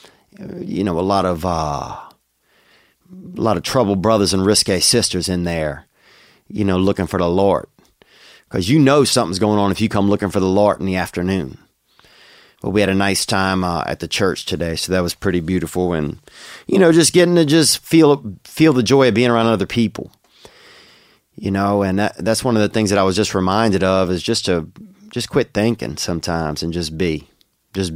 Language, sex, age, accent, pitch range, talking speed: English, male, 30-49, American, 90-110 Hz, 205 wpm